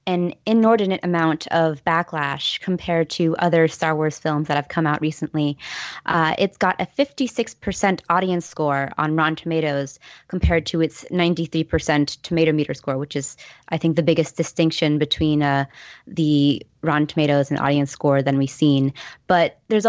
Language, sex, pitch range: English, female, 150-180 Hz